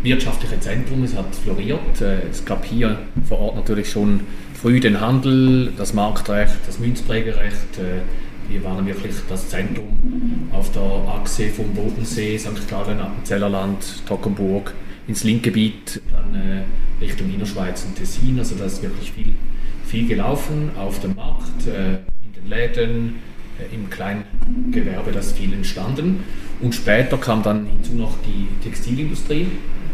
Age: 30-49